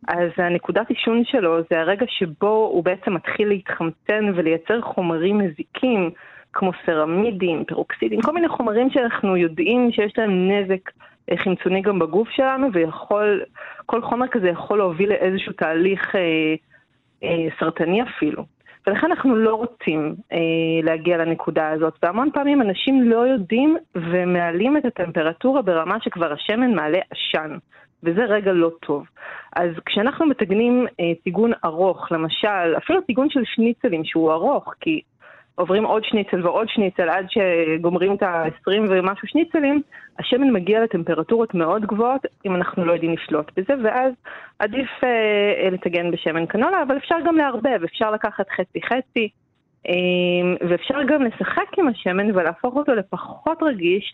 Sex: female